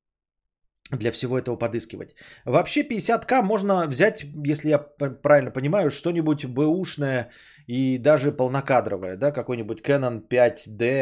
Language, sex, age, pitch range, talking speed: Bulgarian, male, 20-39, 115-165 Hz, 120 wpm